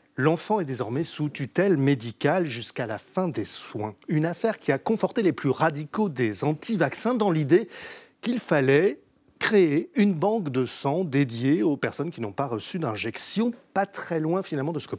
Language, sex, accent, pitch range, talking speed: French, male, French, 140-205 Hz, 180 wpm